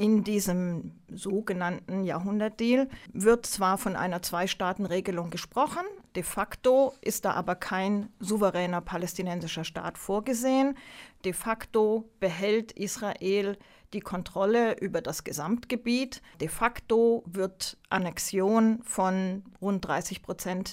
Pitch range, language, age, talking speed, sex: 185-240 Hz, German, 40-59, 105 wpm, female